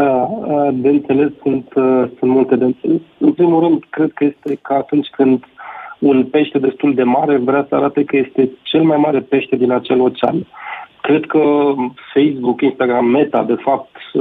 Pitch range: 125-145 Hz